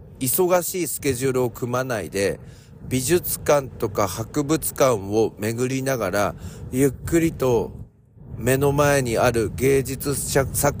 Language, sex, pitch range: Japanese, male, 110-145 Hz